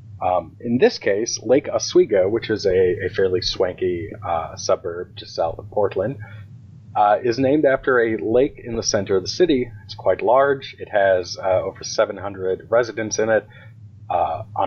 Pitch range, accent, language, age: 105-130 Hz, American, English, 30-49